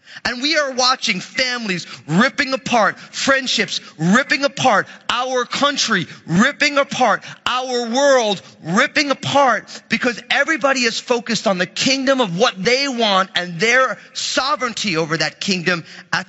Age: 30-49